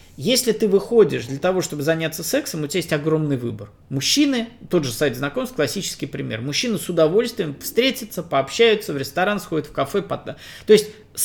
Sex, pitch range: male, 140-215 Hz